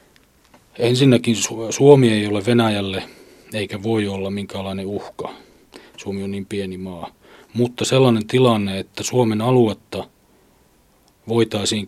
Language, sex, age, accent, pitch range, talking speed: Finnish, male, 30-49, native, 100-115 Hz, 110 wpm